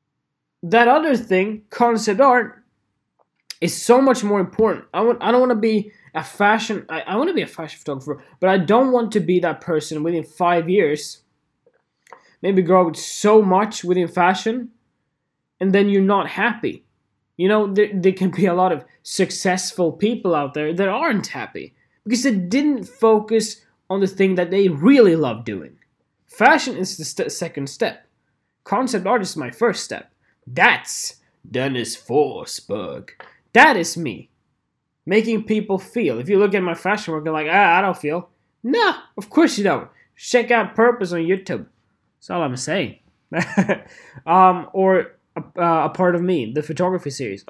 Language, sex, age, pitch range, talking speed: English, male, 20-39, 160-215 Hz, 175 wpm